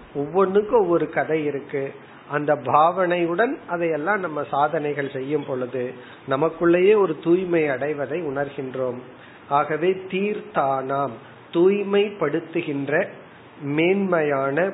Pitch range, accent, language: 140-190 Hz, native, Tamil